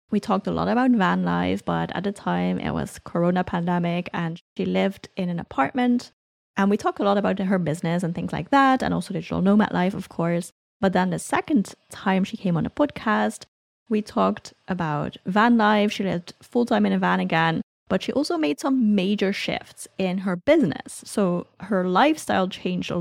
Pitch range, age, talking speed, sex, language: 180-230 Hz, 10-29, 205 wpm, female, English